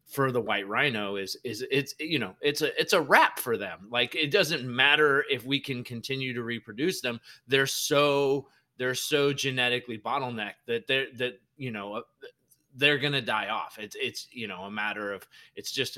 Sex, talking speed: male, 195 wpm